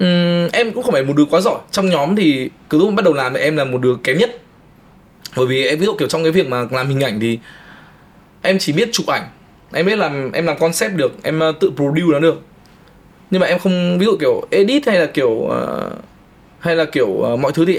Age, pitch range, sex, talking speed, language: 20-39, 145-190 Hz, male, 250 wpm, Vietnamese